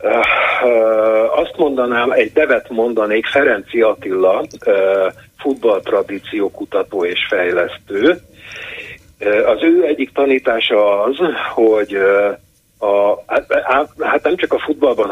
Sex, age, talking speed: male, 50-69, 90 wpm